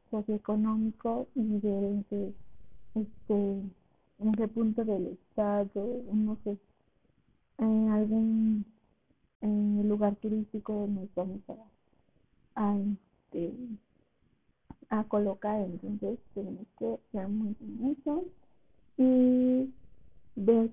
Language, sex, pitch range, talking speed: Spanish, female, 205-230 Hz, 95 wpm